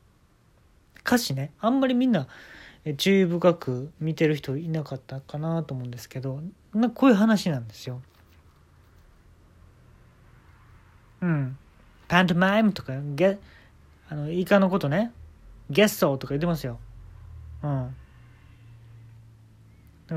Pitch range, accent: 110-175 Hz, native